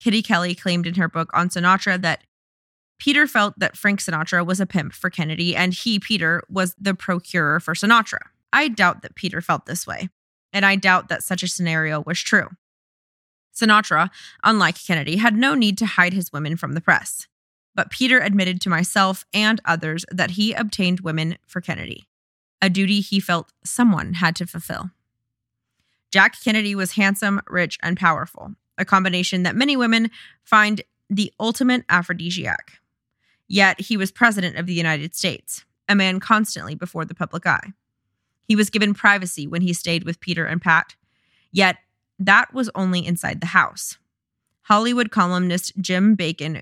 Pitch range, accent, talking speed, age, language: 170-205 Hz, American, 165 wpm, 20-39, English